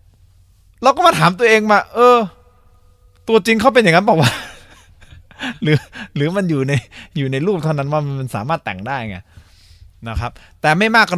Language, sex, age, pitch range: Thai, male, 20-39, 90-135 Hz